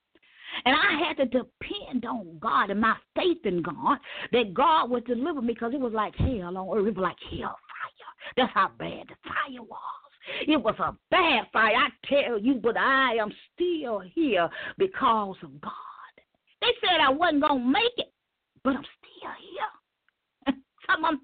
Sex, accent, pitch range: female, American, 250-400 Hz